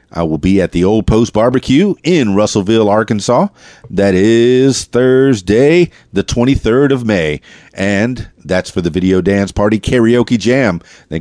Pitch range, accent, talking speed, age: 95-125 Hz, American, 150 wpm, 40-59